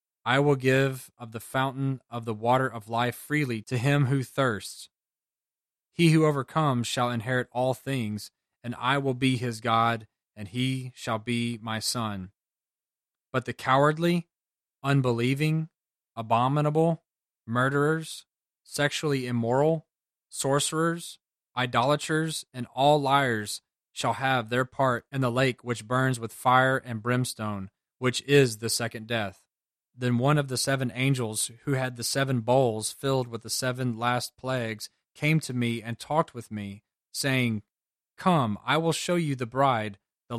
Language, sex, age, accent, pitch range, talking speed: English, male, 20-39, American, 115-140 Hz, 145 wpm